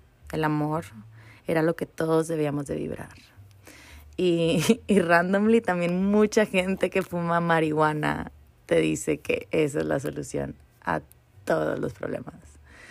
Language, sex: Spanish, female